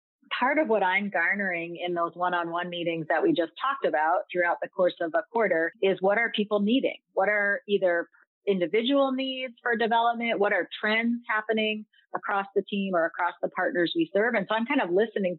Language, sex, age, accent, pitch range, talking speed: English, female, 30-49, American, 180-235 Hz, 200 wpm